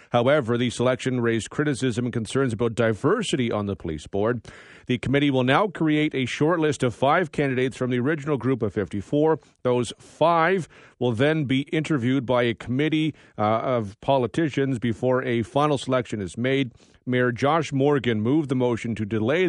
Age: 40-59